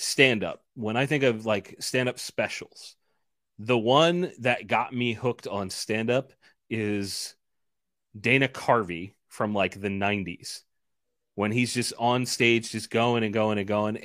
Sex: male